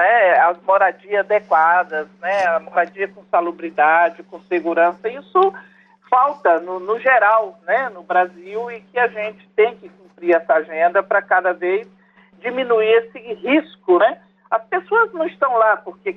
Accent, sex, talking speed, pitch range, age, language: Brazilian, male, 150 wpm, 195-290 Hz, 50-69, Portuguese